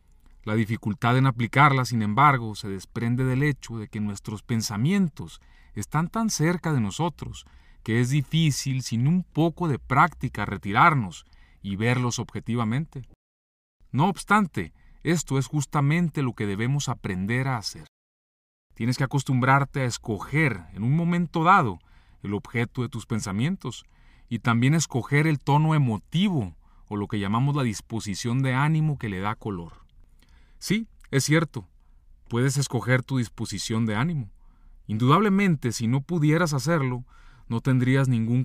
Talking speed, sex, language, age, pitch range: 140 wpm, male, Spanish, 40-59, 105-145 Hz